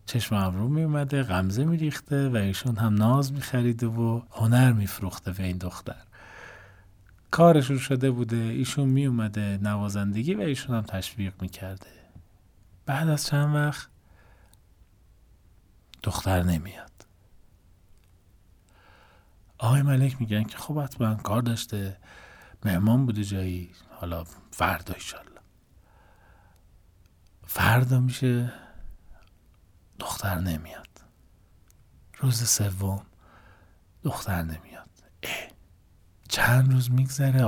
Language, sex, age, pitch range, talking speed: Persian, male, 40-59, 95-120 Hz, 95 wpm